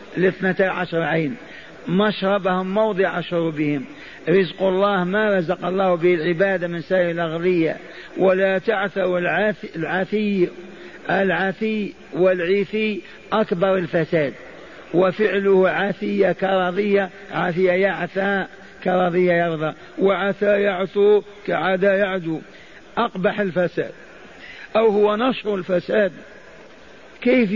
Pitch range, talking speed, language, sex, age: 185-210 Hz, 90 wpm, Arabic, male, 50-69